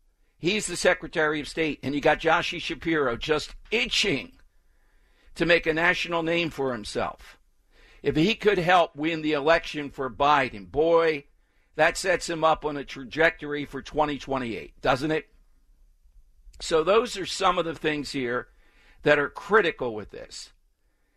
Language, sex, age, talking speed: English, male, 60-79, 150 wpm